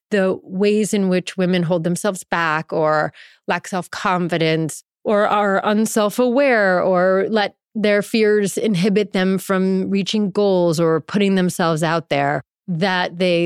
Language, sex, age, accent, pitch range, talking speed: English, female, 30-49, American, 170-205 Hz, 145 wpm